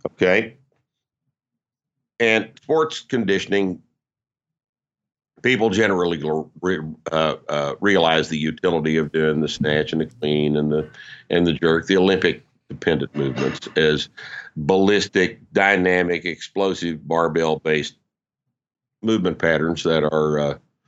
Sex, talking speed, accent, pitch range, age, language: male, 110 wpm, American, 80-115 Hz, 50-69, English